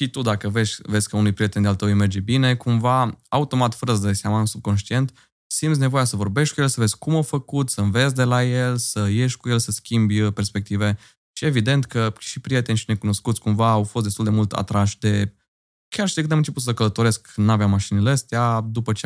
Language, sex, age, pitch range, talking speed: Romanian, male, 20-39, 105-125 Hz, 230 wpm